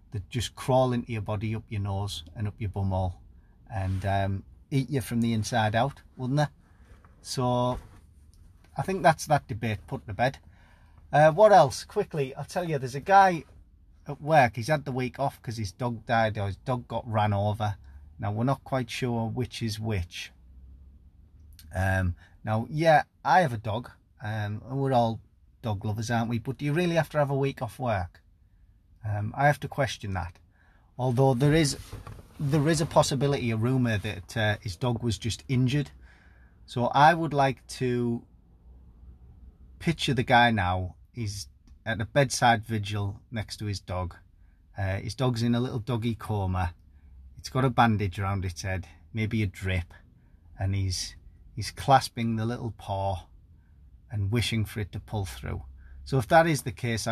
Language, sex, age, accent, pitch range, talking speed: English, male, 30-49, British, 90-125 Hz, 180 wpm